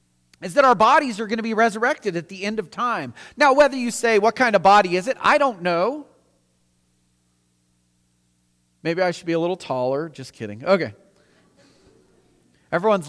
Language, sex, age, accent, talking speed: English, male, 40-59, American, 175 wpm